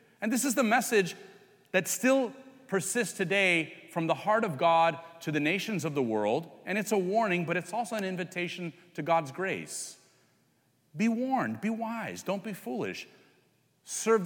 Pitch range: 145-210 Hz